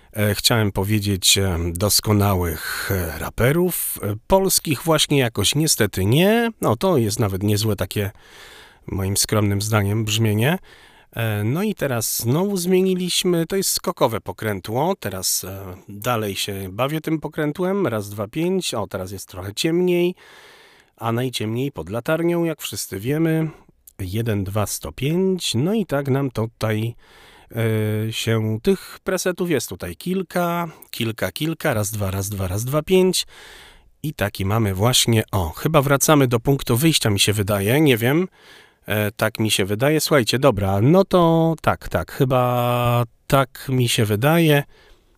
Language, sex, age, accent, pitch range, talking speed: Polish, male, 40-59, native, 105-160 Hz, 135 wpm